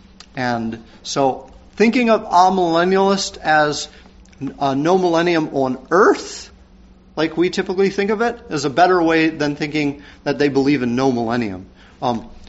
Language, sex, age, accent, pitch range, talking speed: English, male, 50-69, American, 120-175 Hz, 145 wpm